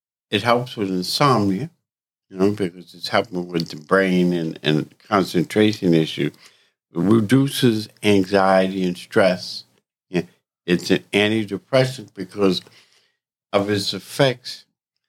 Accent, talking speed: American, 110 wpm